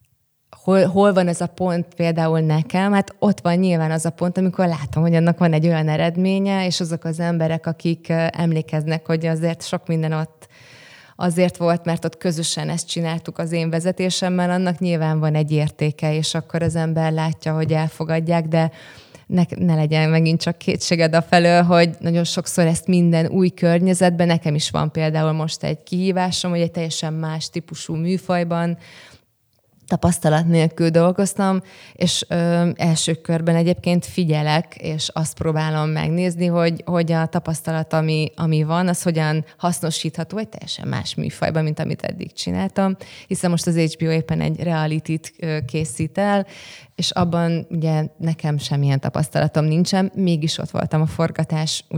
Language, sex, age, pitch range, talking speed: Hungarian, female, 20-39, 155-175 Hz, 160 wpm